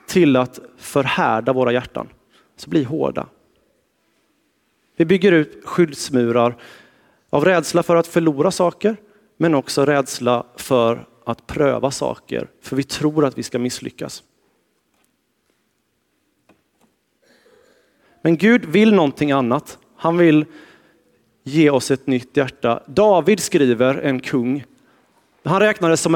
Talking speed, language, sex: 115 wpm, Swedish, male